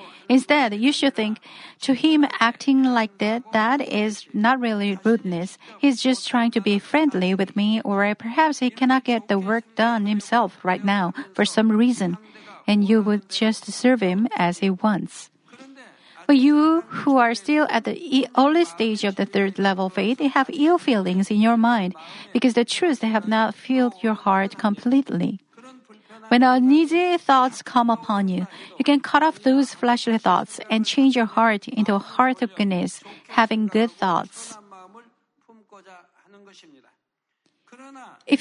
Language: Korean